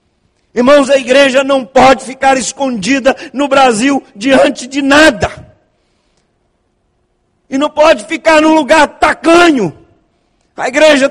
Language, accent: Portuguese, Brazilian